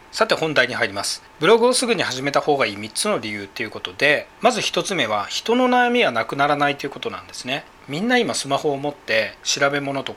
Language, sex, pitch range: Japanese, male, 130-205 Hz